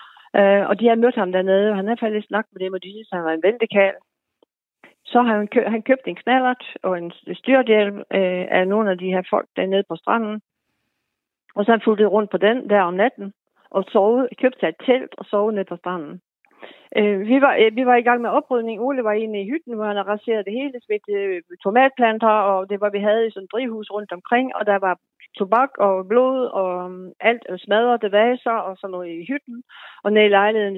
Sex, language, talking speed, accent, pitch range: female, Danish, 215 wpm, native, 185-240 Hz